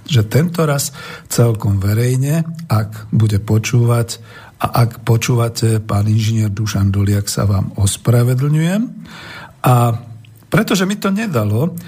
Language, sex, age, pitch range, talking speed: Slovak, male, 50-69, 105-130 Hz, 115 wpm